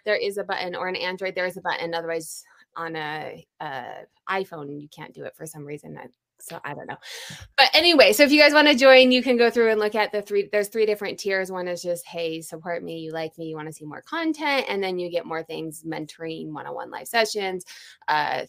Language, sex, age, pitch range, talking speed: English, female, 20-39, 180-245 Hz, 245 wpm